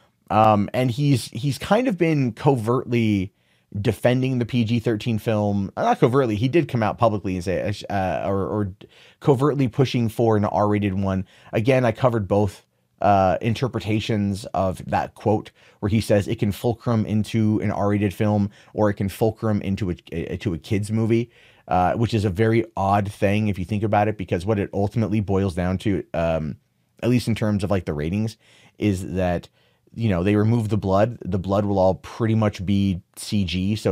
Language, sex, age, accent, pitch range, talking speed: English, male, 30-49, American, 100-115 Hz, 185 wpm